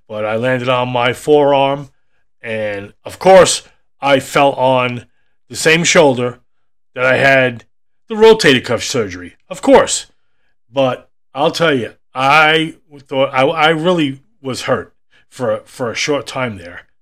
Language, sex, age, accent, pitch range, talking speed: English, male, 30-49, American, 120-150 Hz, 145 wpm